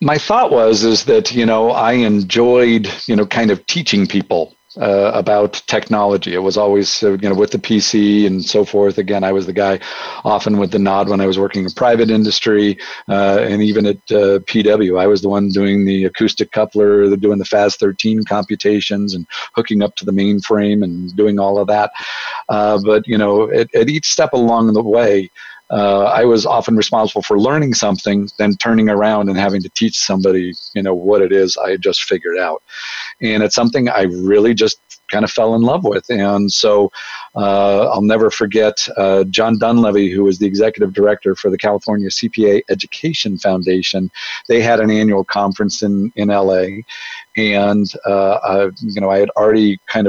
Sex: male